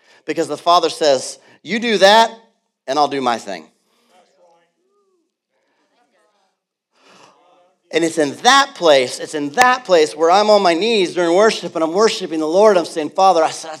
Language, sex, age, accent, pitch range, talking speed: English, male, 40-59, American, 170-245 Hz, 165 wpm